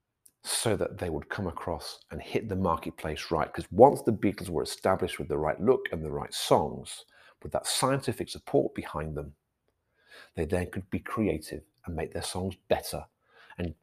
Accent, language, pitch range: British, English, 80-105 Hz